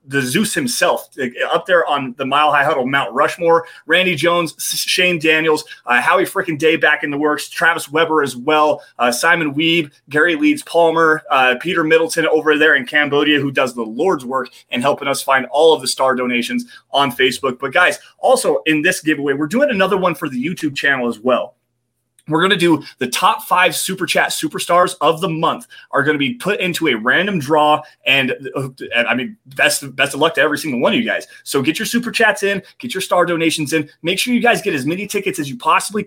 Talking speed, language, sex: 220 wpm, English, male